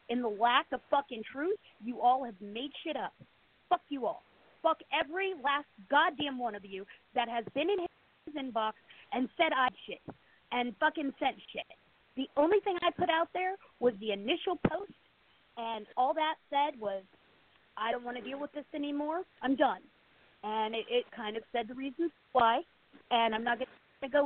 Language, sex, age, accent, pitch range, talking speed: English, female, 40-59, American, 235-295 Hz, 190 wpm